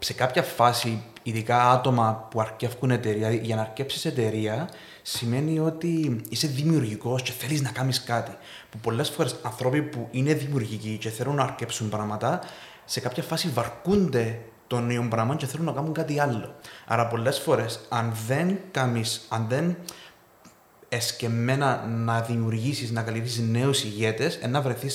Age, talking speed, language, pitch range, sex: 20-39, 150 wpm, Greek, 115-130 Hz, male